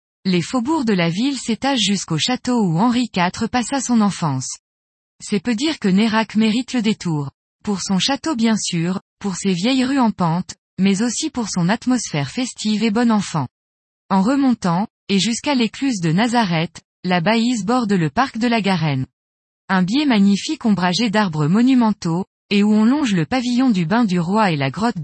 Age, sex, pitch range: 20-39, female, 175-245 Hz